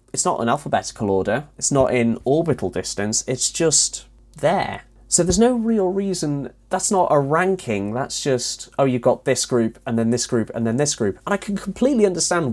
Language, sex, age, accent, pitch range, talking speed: English, male, 30-49, British, 115-160 Hz, 200 wpm